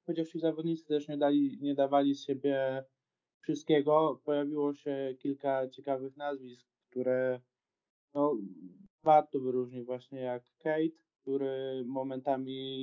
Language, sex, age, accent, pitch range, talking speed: Polish, male, 20-39, native, 130-160 Hz, 115 wpm